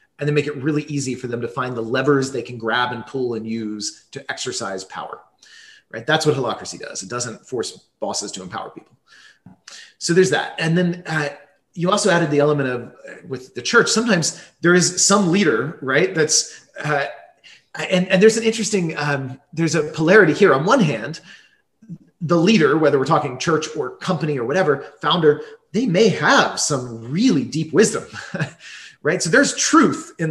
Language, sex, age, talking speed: English, male, 30-49, 185 wpm